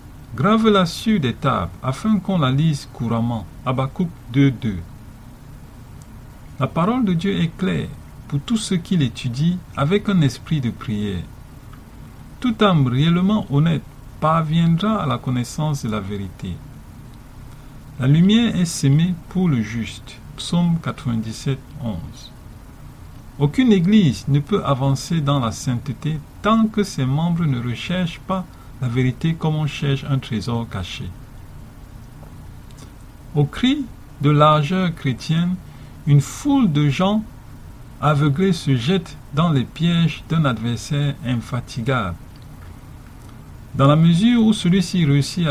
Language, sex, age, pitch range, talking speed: English, male, 50-69, 125-170 Hz, 125 wpm